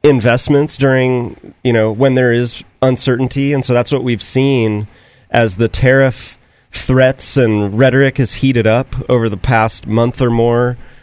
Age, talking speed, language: 30-49, 160 wpm, English